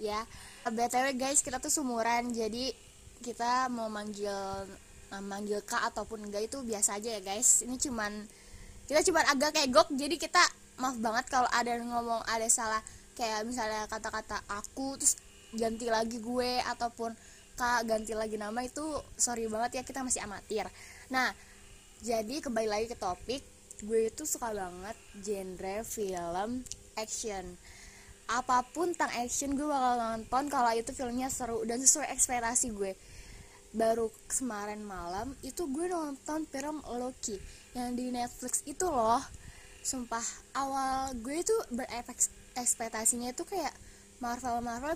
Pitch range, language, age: 220-265 Hz, Indonesian, 10-29